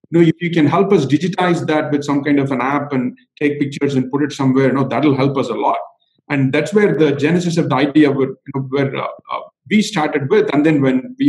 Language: English